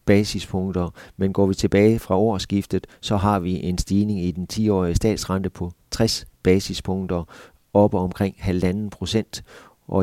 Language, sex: Danish, male